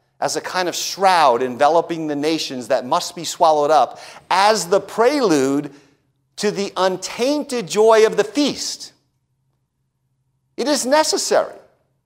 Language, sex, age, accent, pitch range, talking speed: English, male, 40-59, American, 150-215 Hz, 130 wpm